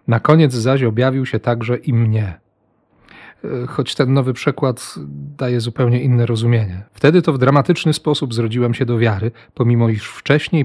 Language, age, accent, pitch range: Polish, 40-59, native, 115-140 Hz